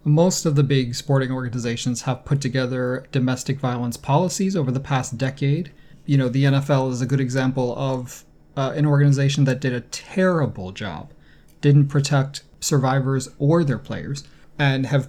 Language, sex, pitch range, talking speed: English, male, 125-145 Hz, 165 wpm